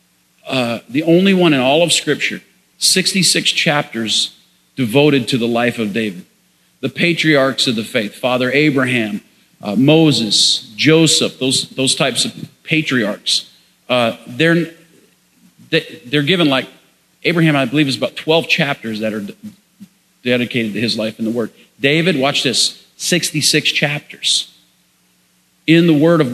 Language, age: English, 50-69